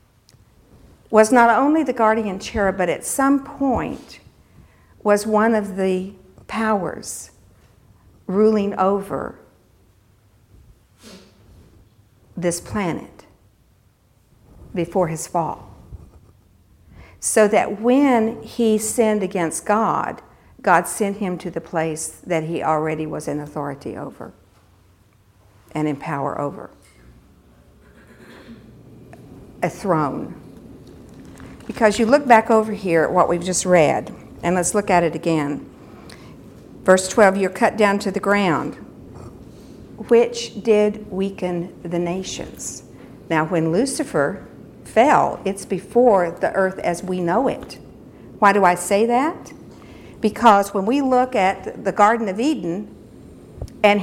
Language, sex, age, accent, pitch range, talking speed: English, female, 60-79, American, 155-215 Hz, 115 wpm